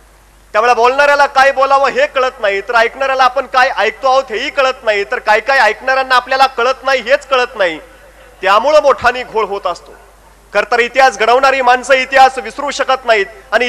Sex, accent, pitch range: male, native, 255-310 Hz